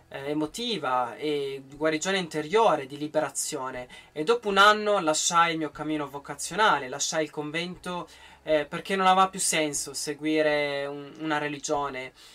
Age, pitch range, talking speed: 20-39, 150-195 Hz, 135 wpm